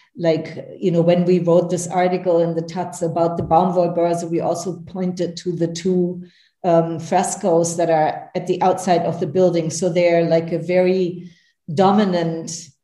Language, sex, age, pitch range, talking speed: English, female, 40-59, 170-185 Hz, 170 wpm